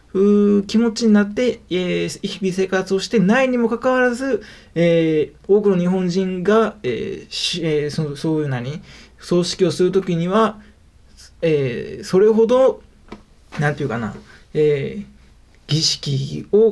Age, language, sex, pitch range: 20-39, Japanese, male, 145-200 Hz